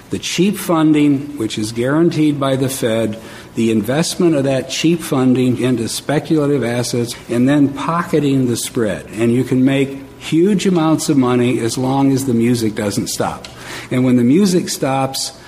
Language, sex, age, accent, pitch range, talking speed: English, male, 60-79, American, 115-140 Hz, 165 wpm